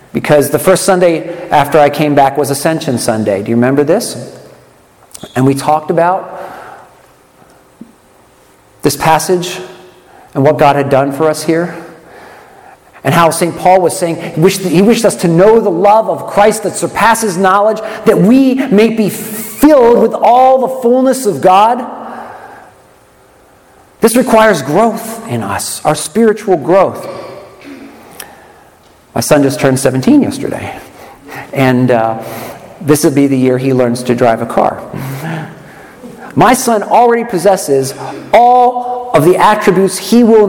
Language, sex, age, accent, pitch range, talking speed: English, male, 40-59, American, 130-210 Hz, 140 wpm